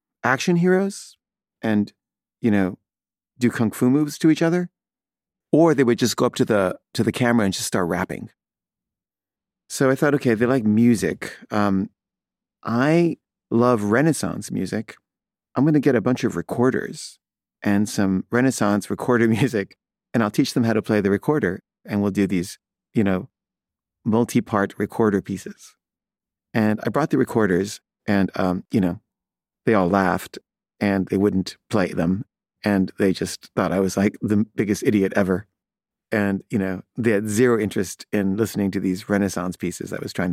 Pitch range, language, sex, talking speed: 100-125 Hz, English, male, 170 wpm